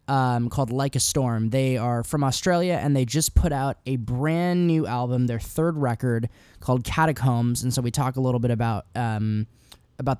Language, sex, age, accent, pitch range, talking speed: English, male, 10-29, American, 115-155 Hz, 195 wpm